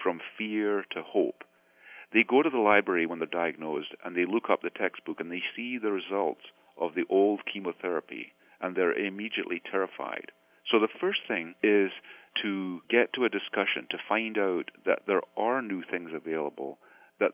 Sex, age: male, 40-59